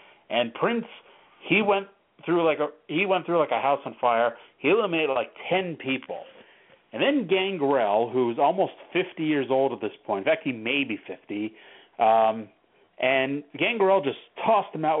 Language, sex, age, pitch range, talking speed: English, male, 40-59, 125-155 Hz, 175 wpm